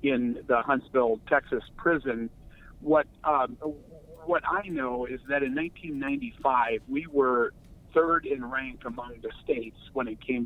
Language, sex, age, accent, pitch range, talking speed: English, male, 50-69, American, 125-165 Hz, 145 wpm